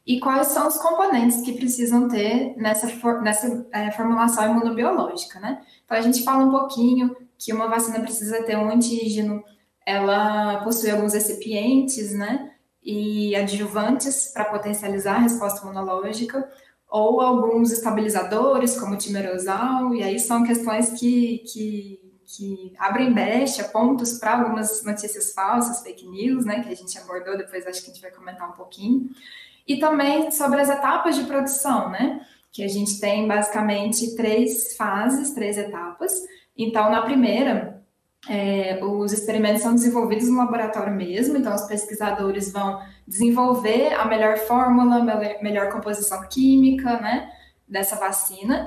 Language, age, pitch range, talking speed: Portuguese, 10-29, 205-250 Hz, 145 wpm